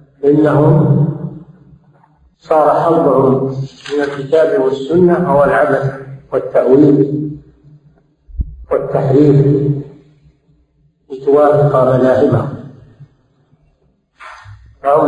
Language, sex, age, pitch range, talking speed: Arabic, male, 50-69, 125-150 Hz, 50 wpm